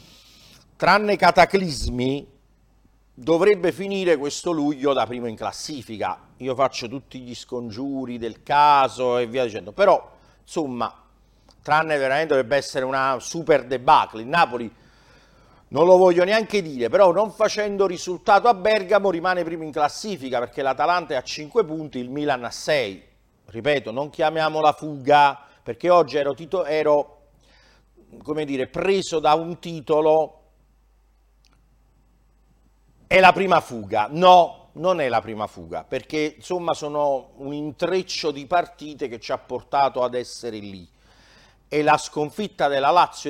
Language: Italian